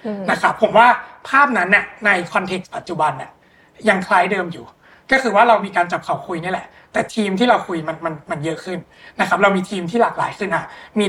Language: Thai